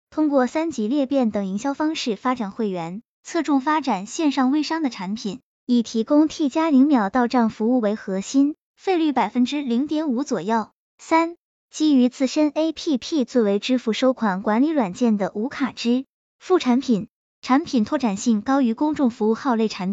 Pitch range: 220-285 Hz